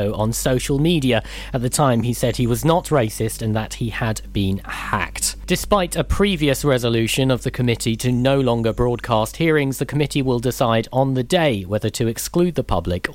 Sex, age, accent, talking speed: male, 40-59, British, 190 wpm